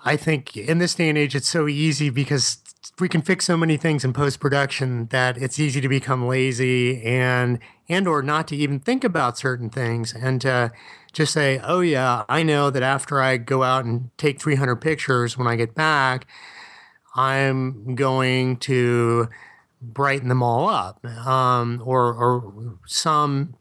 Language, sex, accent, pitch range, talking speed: English, male, American, 120-150 Hz, 170 wpm